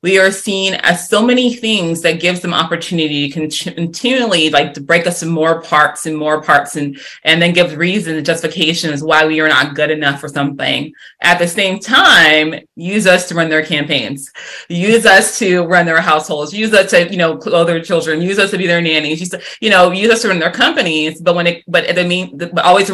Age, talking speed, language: 30-49, 225 wpm, English